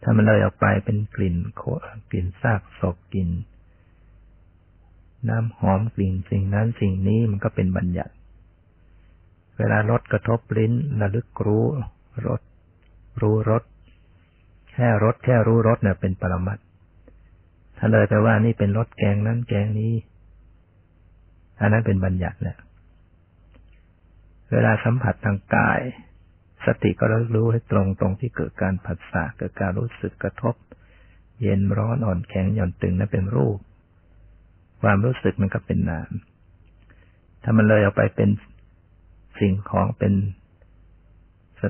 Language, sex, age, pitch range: Thai, male, 60-79, 90-110 Hz